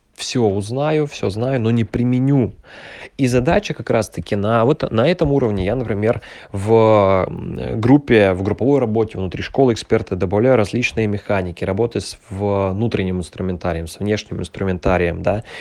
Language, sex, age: Russian, male, 20-39